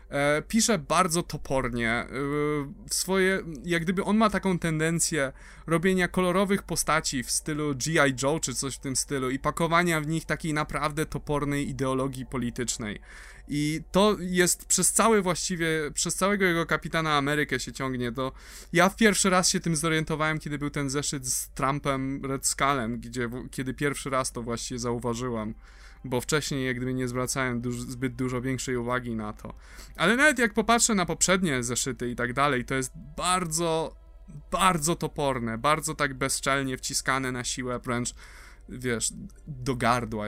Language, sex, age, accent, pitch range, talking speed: Polish, male, 20-39, native, 130-170 Hz, 155 wpm